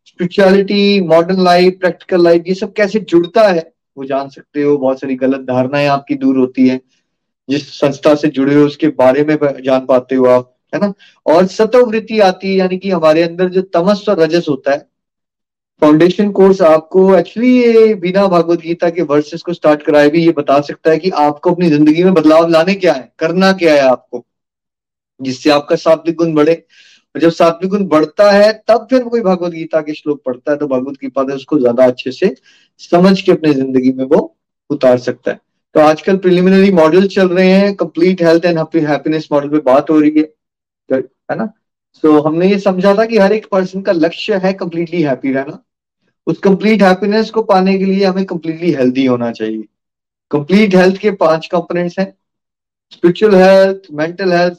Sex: male